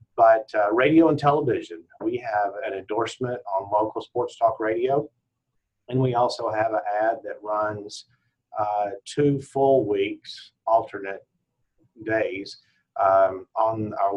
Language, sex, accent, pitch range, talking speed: English, male, American, 110-165 Hz, 130 wpm